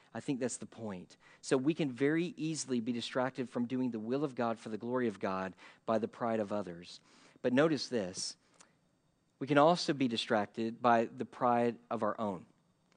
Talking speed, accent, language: 195 wpm, American, English